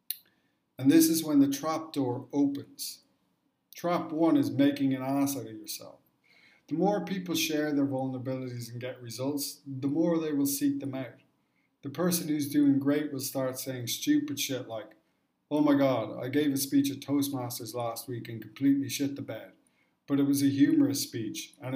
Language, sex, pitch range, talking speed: English, male, 130-155 Hz, 185 wpm